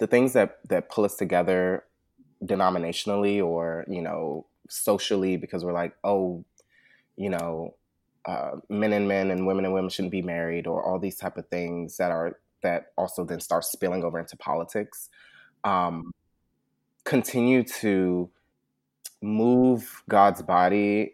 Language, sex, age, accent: English, male, 20-39, American